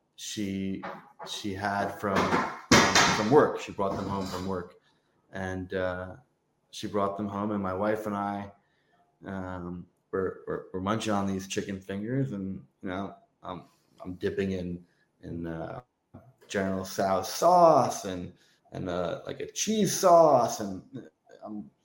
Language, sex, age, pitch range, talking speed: English, male, 20-39, 100-130 Hz, 150 wpm